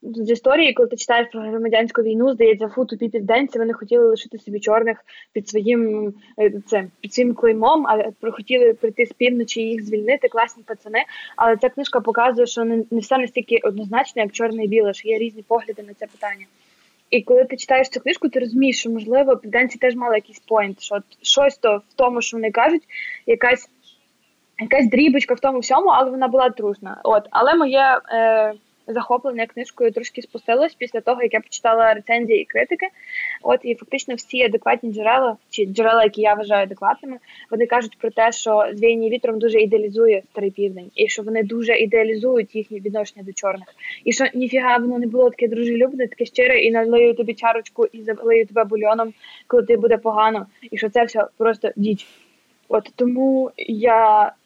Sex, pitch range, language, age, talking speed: female, 220-250 Hz, Ukrainian, 20-39, 185 wpm